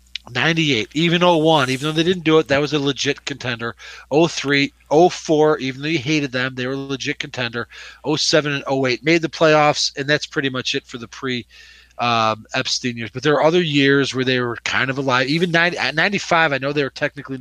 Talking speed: 215 wpm